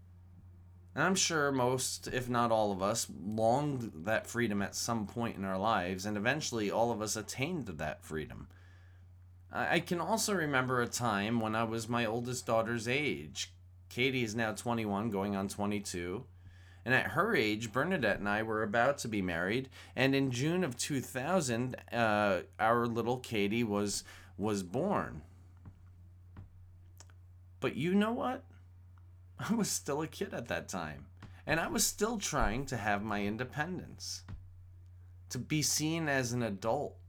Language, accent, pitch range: English, American, 90-120 Hz